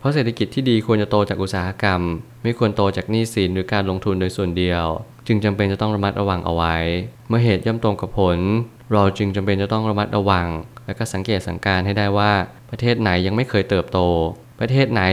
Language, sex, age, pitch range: Thai, male, 20-39, 95-110 Hz